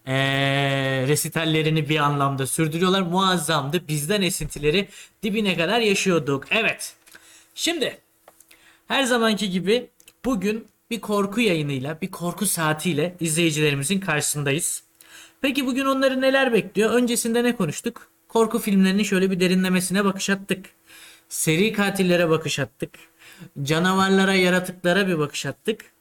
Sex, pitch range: male, 160-230 Hz